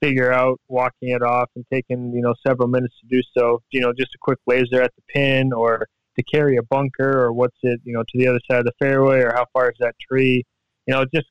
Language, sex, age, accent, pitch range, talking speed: English, male, 20-39, American, 120-130 Hz, 260 wpm